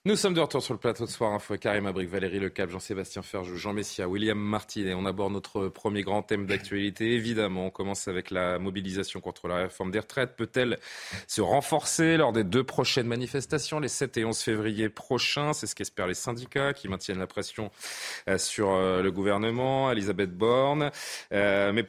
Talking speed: 190 wpm